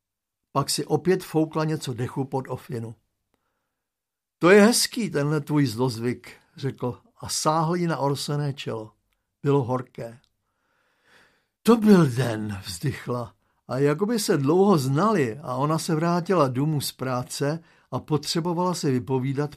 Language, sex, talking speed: Slovak, male, 135 wpm